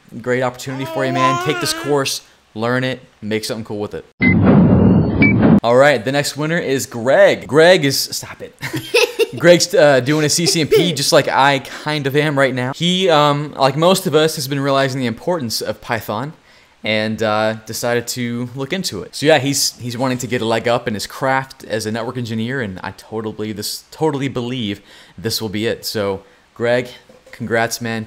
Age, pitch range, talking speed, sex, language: 20-39, 110-145 Hz, 195 wpm, male, English